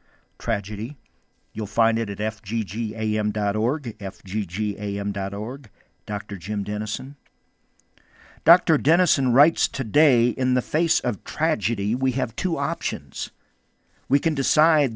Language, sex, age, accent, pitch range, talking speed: English, male, 50-69, American, 110-150 Hz, 105 wpm